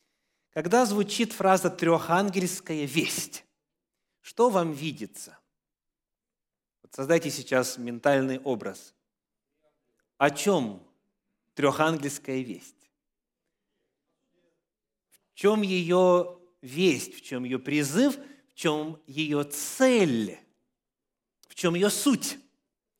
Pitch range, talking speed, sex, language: 140-210 Hz, 85 wpm, male, English